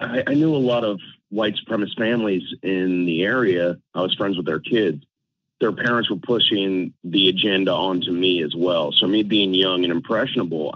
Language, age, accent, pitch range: English, 40-59, American, 90-105 Hz